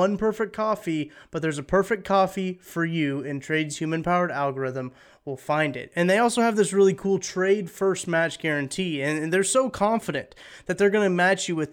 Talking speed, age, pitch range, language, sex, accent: 205 wpm, 20-39, 145-195 Hz, English, male, American